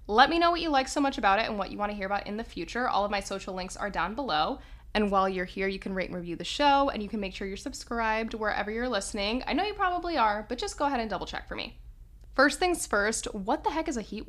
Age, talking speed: 10-29, 300 wpm